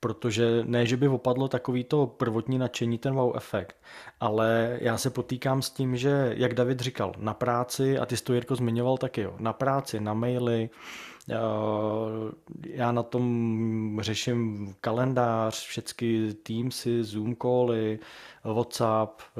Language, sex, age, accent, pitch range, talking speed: Czech, male, 20-39, native, 115-125 Hz, 135 wpm